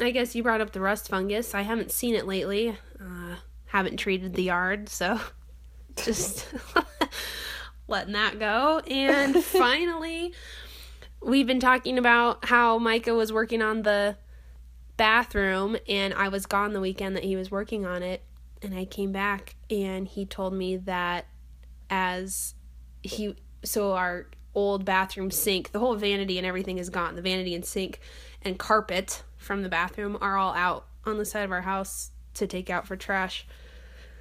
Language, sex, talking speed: English, female, 165 wpm